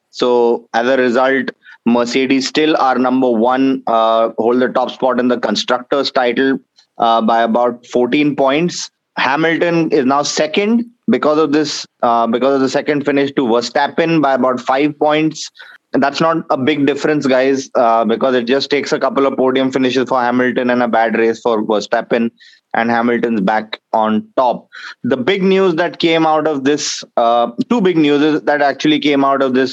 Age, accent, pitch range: 20-39, Indian, 120-145 Hz